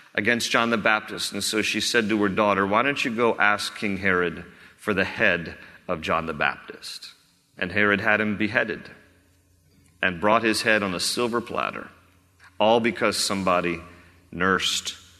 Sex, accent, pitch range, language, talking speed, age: male, American, 100-135 Hz, English, 165 wpm, 40-59